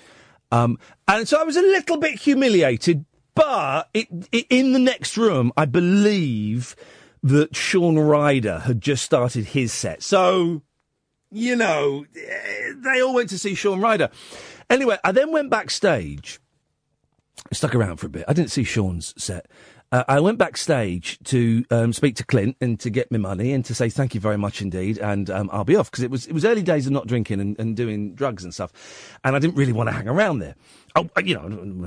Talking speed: 200 wpm